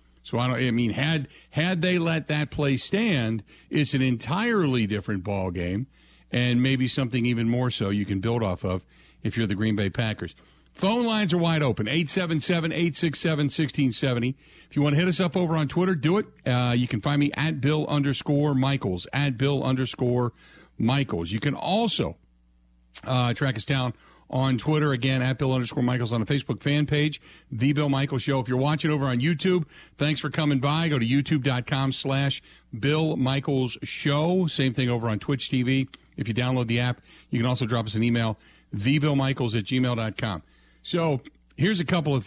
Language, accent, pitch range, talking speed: English, American, 115-150 Hz, 185 wpm